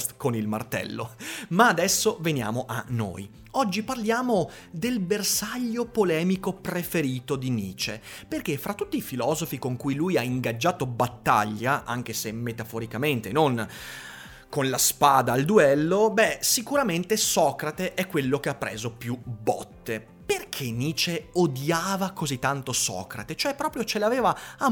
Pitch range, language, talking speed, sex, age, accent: 115-190 Hz, Italian, 140 wpm, male, 30-49, native